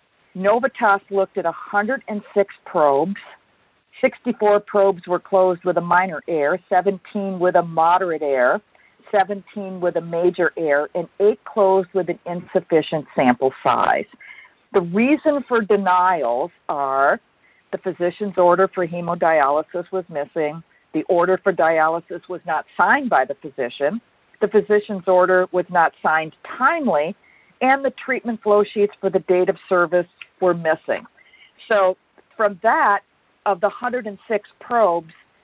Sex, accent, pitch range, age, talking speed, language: female, American, 170-210 Hz, 50-69, 135 wpm, English